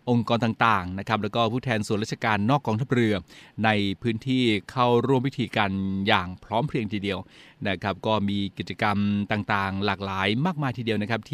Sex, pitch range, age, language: male, 105-125 Hz, 20-39, Thai